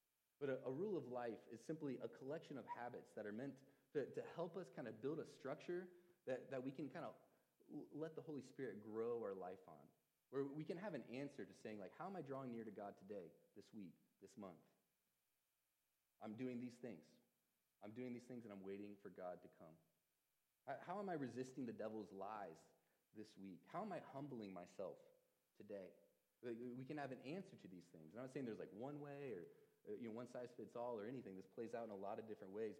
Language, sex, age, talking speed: English, male, 30-49, 225 wpm